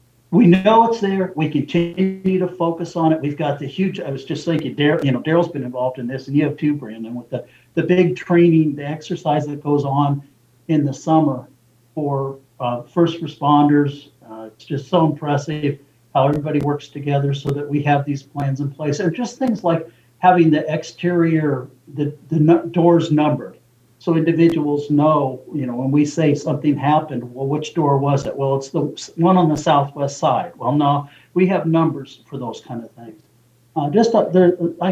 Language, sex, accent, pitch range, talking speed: English, male, American, 140-160 Hz, 200 wpm